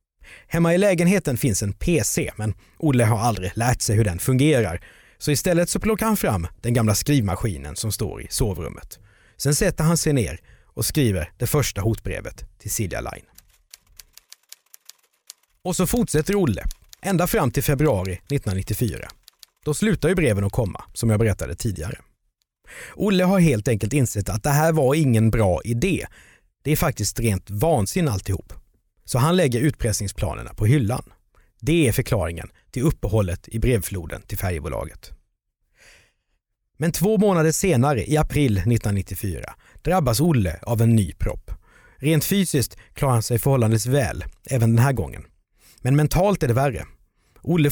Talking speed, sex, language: 155 wpm, male, Swedish